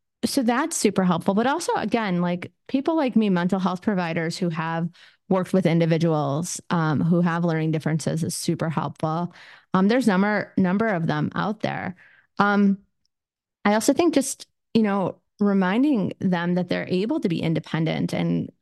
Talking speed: 165 wpm